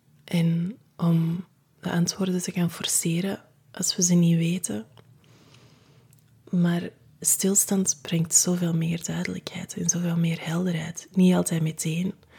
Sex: female